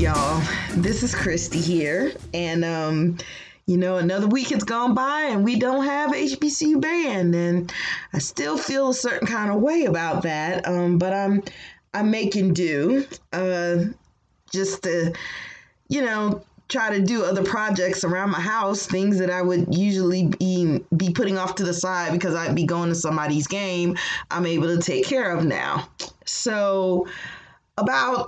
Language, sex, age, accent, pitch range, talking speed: English, female, 20-39, American, 170-200 Hz, 165 wpm